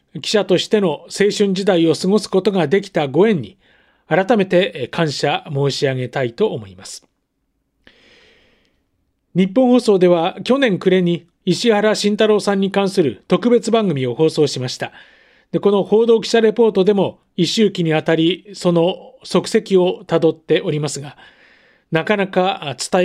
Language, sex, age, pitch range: Japanese, male, 40-59, 160-205 Hz